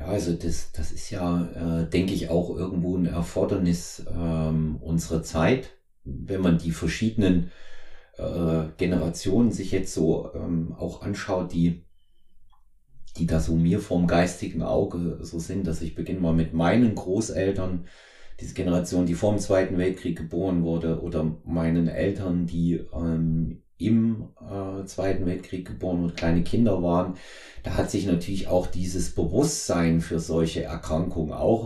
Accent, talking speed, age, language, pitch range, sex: German, 150 wpm, 30-49, German, 80-95 Hz, male